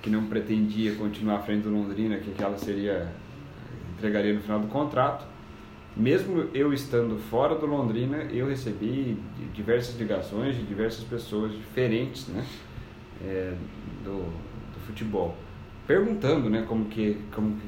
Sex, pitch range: male, 105-125 Hz